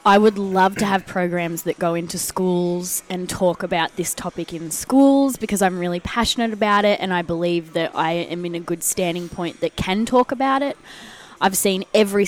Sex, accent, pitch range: female, Australian, 180-230 Hz